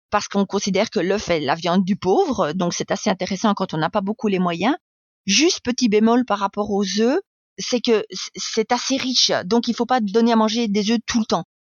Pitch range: 185-225 Hz